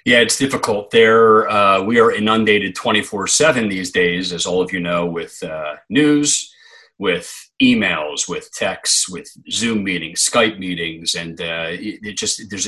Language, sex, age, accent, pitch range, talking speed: English, male, 40-59, American, 90-110 Hz, 160 wpm